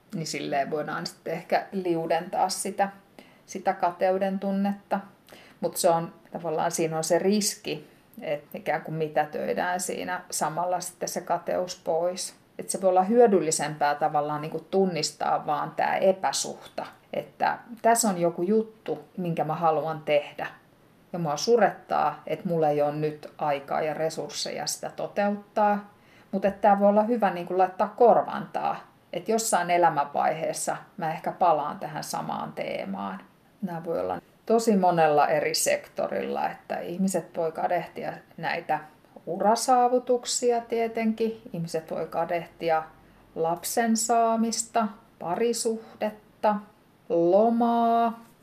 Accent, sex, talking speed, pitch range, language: native, female, 120 wpm, 165-215 Hz, Finnish